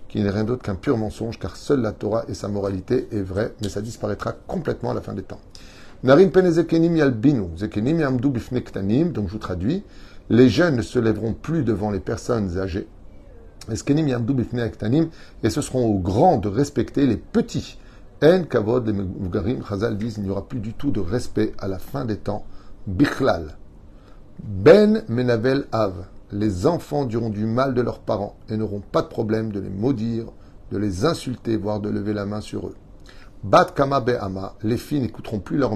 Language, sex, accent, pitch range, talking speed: French, male, French, 100-125 Hz, 175 wpm